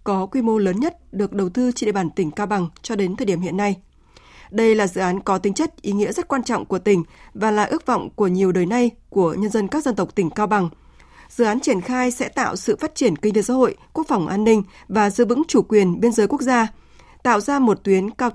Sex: female